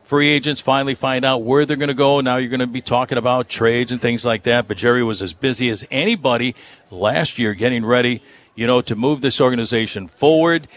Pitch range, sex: 120-150 Hz, male